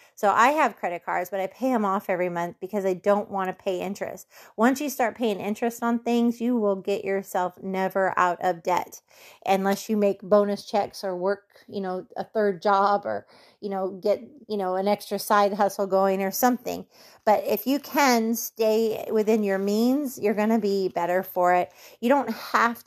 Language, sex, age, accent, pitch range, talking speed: English, female, 30-49, American, 195-235 Hz, 200 wpm